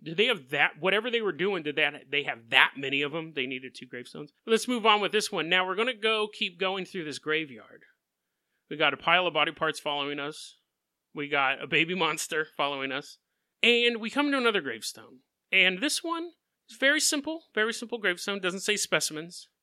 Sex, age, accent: male, 30-49, American